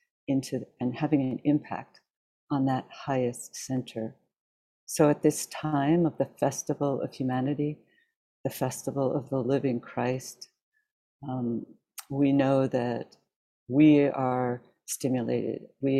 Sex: female